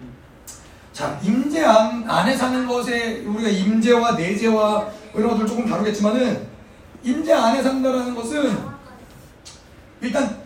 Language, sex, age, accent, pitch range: Korean, male, 30-49, native, 210-255 Hz